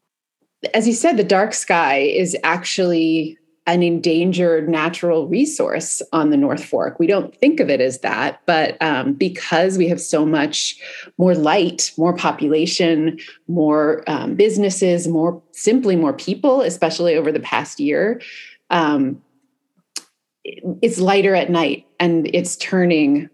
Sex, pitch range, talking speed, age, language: female, 160-215 Hz, 140 wpm, 30-49, English